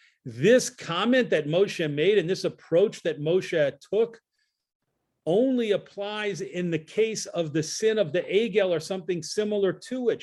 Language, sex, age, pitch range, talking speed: English, male, 40-59, 155-210 Hz, 160 wpm